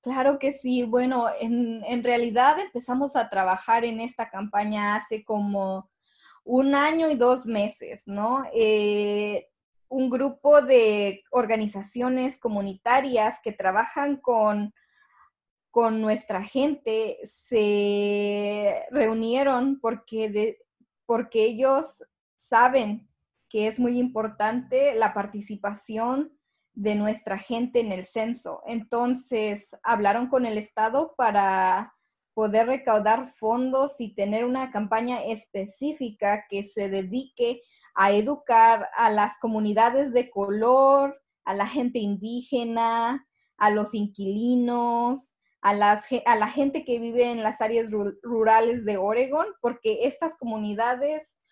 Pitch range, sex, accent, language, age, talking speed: 210-255 Hz, female, Mexican, Spanish, 20-39, 115 wpm